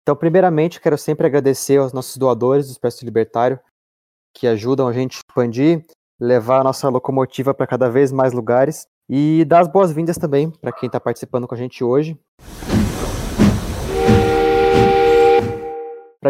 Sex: male